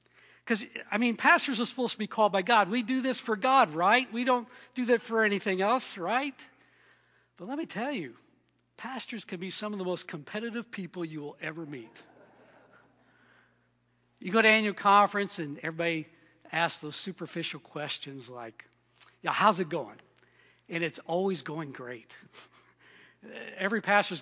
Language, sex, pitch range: English, male, 150-205 Hz